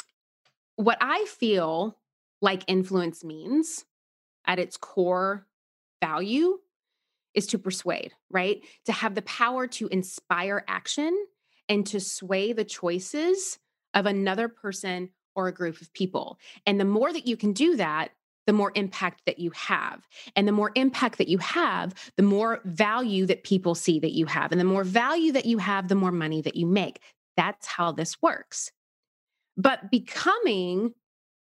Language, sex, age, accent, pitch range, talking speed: English, female, 30-49, American, 190-250 Hz, 160 wpm